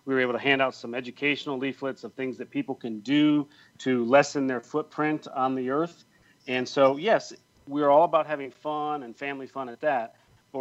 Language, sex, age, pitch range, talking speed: English, male, 40-59, 125-145 Hz, 205 wpm